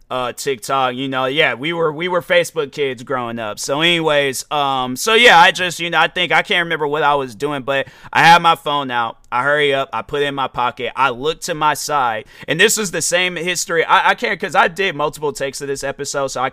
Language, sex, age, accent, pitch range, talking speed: English, male, 30-49, American, 135-180 Hz, 255 wpm